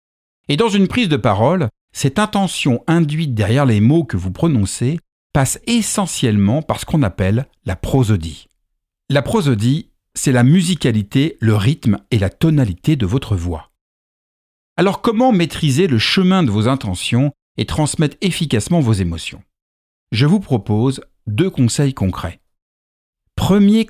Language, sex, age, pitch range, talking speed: French, male, 50-69, 105-160 Hz, 140 wpm